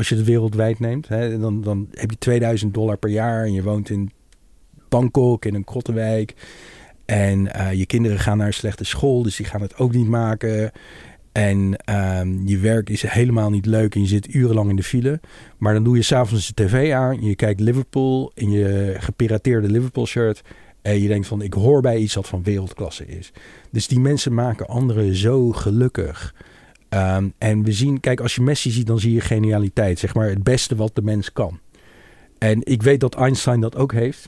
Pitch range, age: 105-120 Hz, 40-59